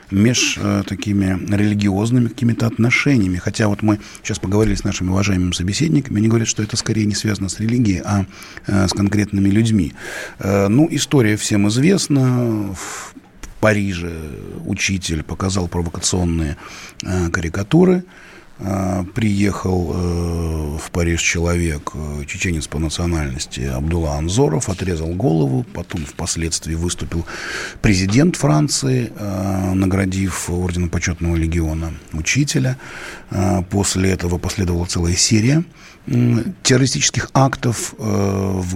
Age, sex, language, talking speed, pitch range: 30-49, male, Russian, 110 wpm, 90-115 Hz